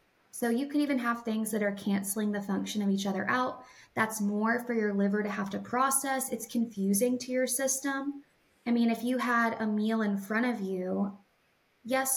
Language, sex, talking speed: English, female, 200 wpm